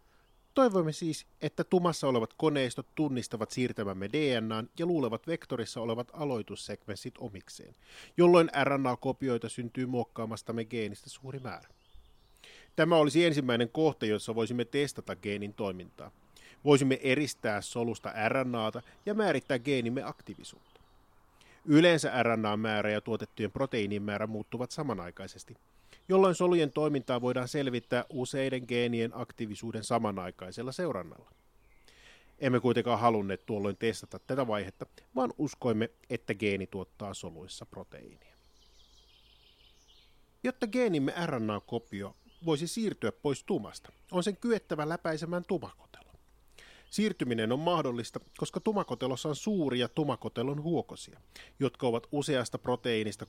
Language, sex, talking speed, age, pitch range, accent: Finnish, male, 110 wpm, 30-49, 110-150 Hz, native